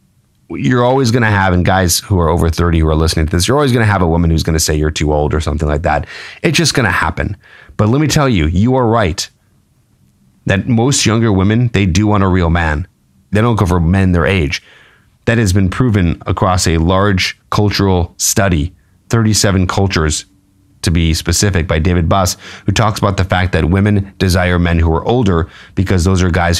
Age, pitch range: 30-49, 85-105 Hz